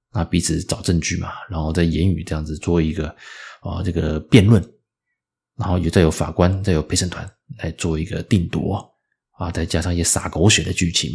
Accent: native